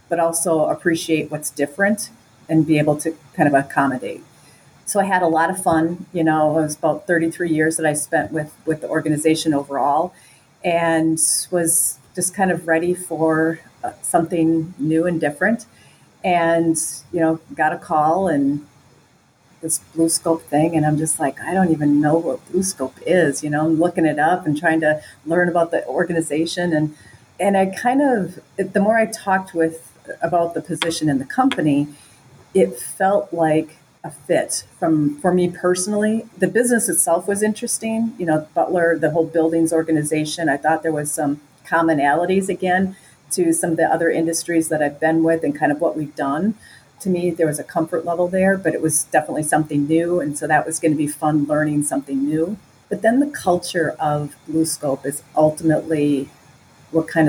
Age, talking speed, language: 40-59, 185 wpm, English